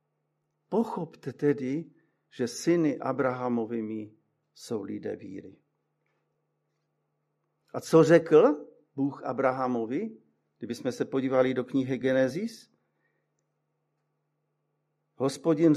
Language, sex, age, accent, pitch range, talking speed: Czech, male, 50-69, native, 135-180 Hz, 75 wpm